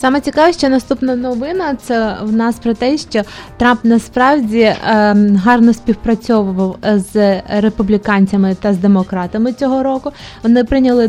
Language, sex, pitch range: Russian, female, 205-245 Hz